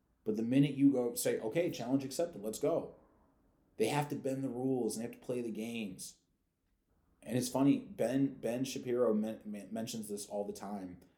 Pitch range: 100-145 Hz